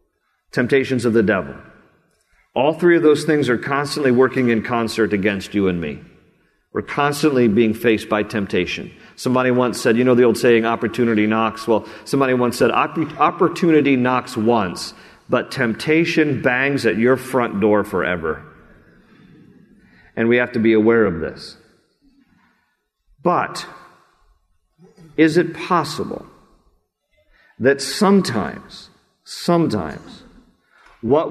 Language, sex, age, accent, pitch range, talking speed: English, male, 50-69, American, 115-170 Hz, 125 wpm